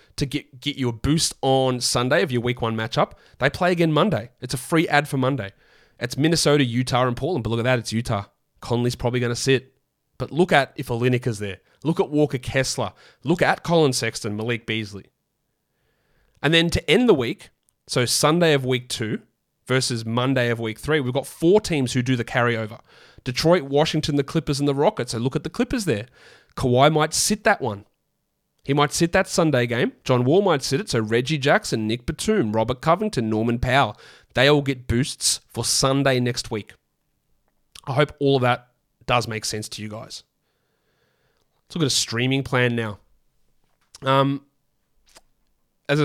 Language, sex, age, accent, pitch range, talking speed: English, male, 30-49, Australian, 120-145 Hz, 190 wpm